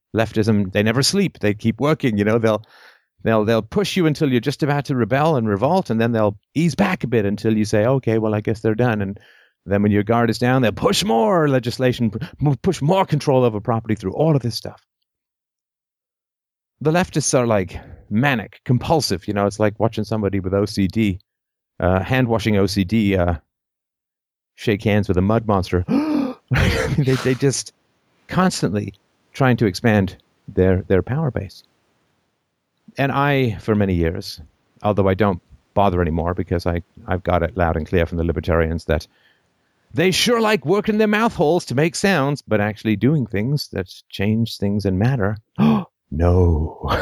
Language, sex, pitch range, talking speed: English, male, 95-135 Hz, 175 wpm